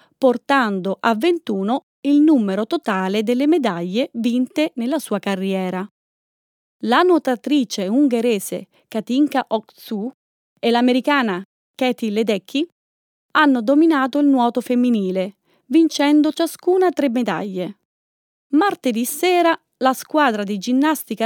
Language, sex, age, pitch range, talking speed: Italian, female, 30-49, 215-290 Hz, 100 wpm